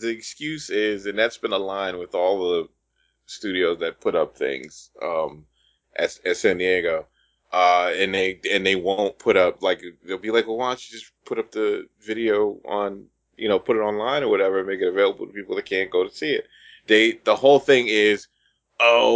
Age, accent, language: 20-39, American, English